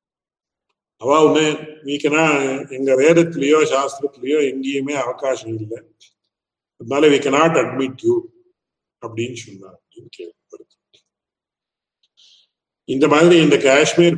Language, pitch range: English, 135-165 Hz